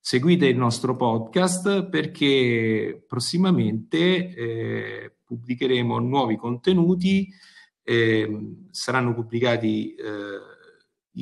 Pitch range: 105-135 Hz